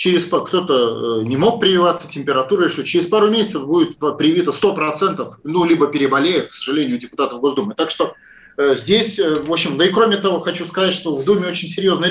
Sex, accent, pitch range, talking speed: male, native, 155-205 Hz, 185 wpm